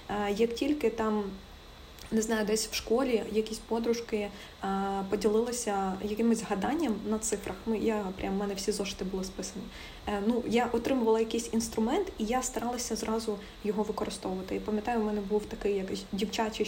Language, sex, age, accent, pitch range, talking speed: Ukrainian, female, 20-39, native, 205-235 Hz, 150 wpm